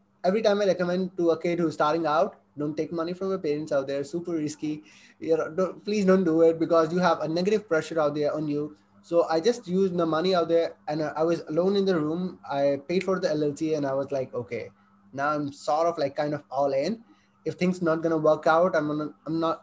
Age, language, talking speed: 20-39, English, 255 wpm